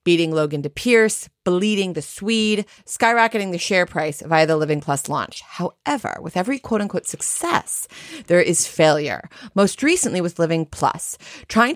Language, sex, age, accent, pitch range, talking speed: English, female, 30-49, American, 155-215 Hz, 160 wpm